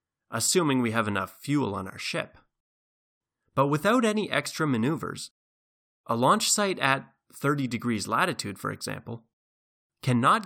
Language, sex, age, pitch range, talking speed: English, male, 30-49, 110-150 Hz, 130 wpm